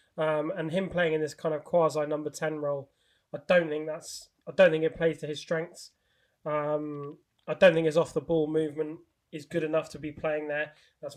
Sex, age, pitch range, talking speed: male, 20-39, 145-160 Hz, 220 wpm